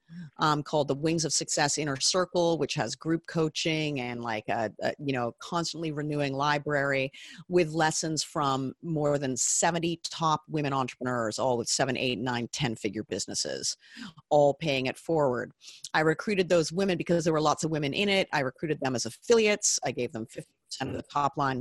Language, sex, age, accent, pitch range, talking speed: English, female, 30-49, American, 140-175 Hz, 190 wpm